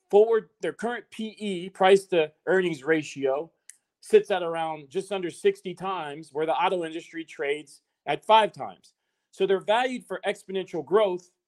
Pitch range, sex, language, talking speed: 160-205 Hz, male, English, 140 wpm